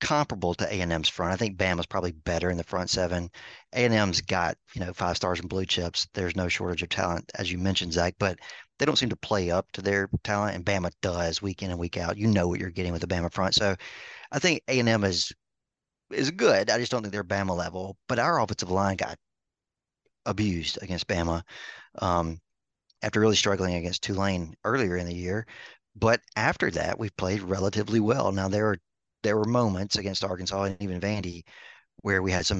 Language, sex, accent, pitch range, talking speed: English, male, American, 90-105 Hz, 205 wpm